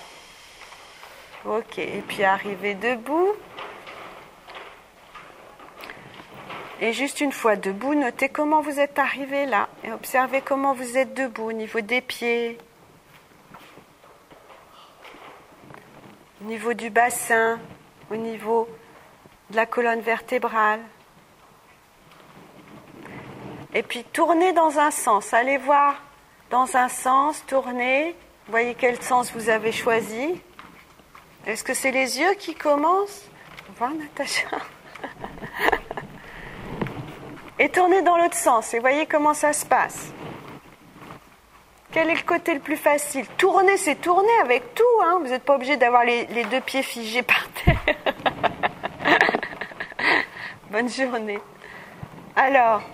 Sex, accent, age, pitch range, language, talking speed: female, French, 40-59, 230-315 Hz, French, 115 wpm